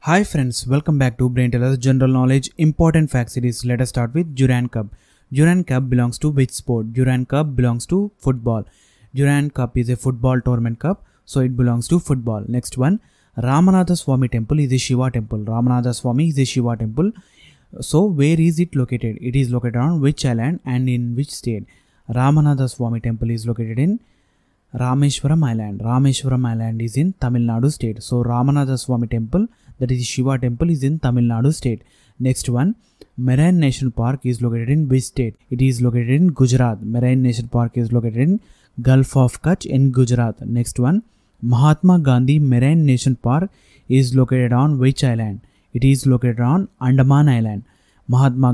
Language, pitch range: English, 120-145 Hz